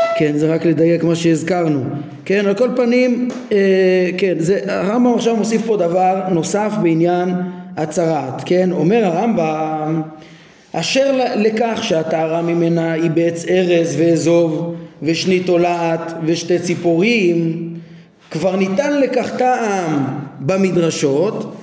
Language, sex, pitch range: Hebrew, male, 170-245 Hz